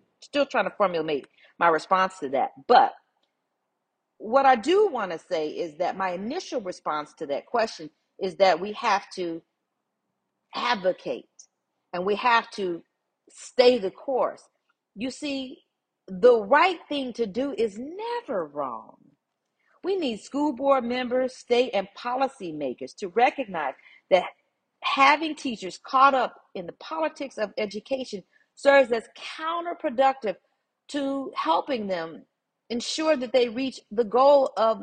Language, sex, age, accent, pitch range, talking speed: English, female, 40-59, American, 205-280 Hz, 135 wpm